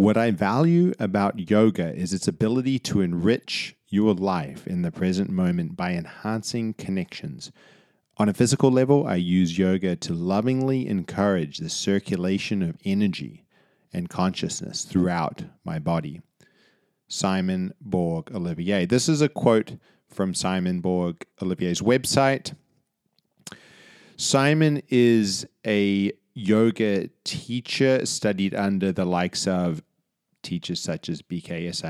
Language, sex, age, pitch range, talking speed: English, male, 30-49, 90-130 Hz, 115 wpm